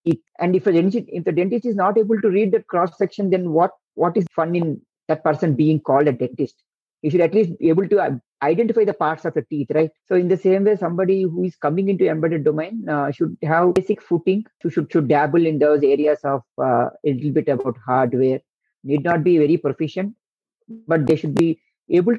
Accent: Indian